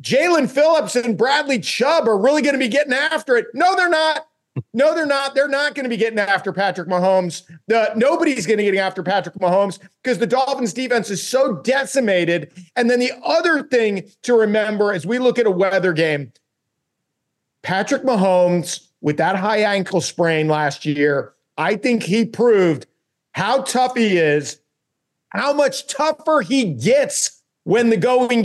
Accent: American